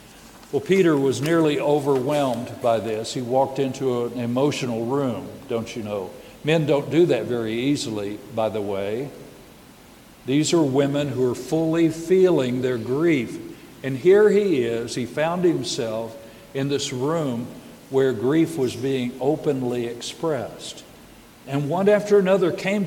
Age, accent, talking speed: 60-79, American, 145 wpm